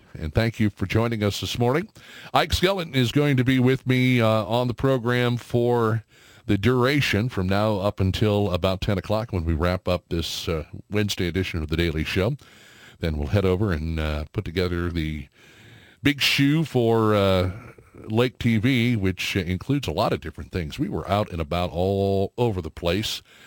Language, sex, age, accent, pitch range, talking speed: English, male, 50-69, American, 85-110 Hz, 185 wpm